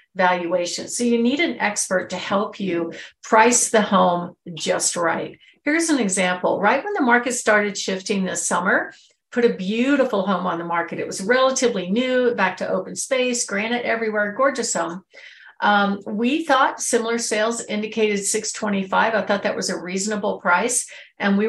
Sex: female